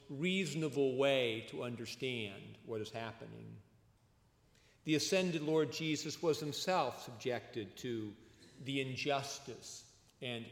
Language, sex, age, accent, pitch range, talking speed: English, male, 50-69, American, 115-155 Hz, 105 wpm